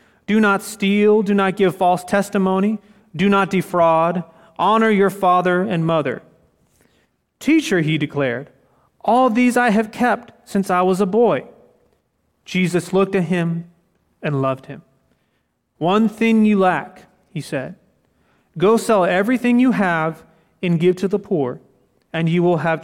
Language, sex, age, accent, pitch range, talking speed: English, male, 30-49, American, 160-210 Hz, 145 wpm